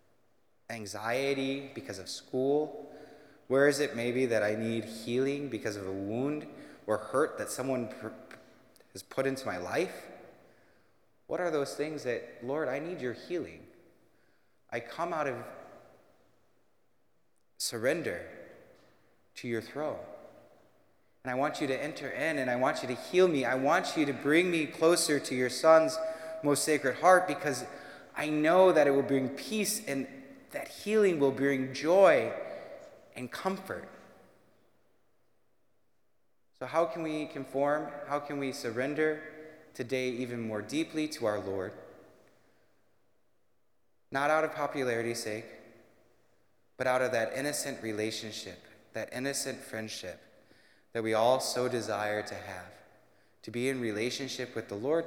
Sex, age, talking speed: male, 20-39, 140 wpm